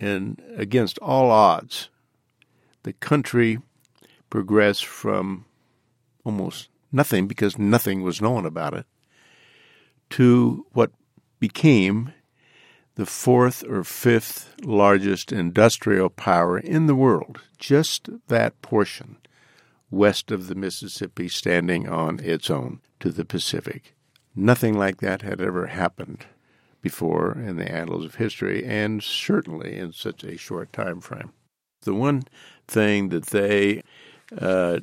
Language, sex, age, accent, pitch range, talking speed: English, male, 60-79, American, 95-125 Hz, 120 wpm